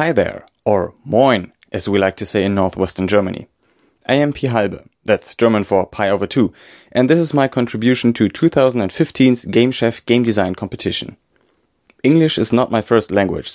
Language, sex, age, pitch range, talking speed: German, male, 30-49, 100-130 Hz, 175 wpm